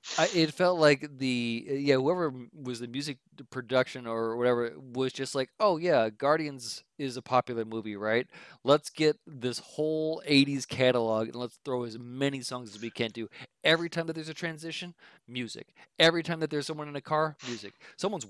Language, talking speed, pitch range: English, 185 wpm, 125-160 Hz